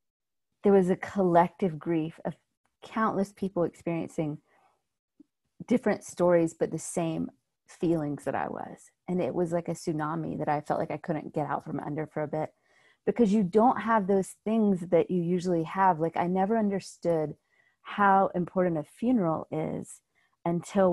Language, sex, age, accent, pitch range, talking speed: English, female, 30-49, American, 160-195 Hz, 165 wpm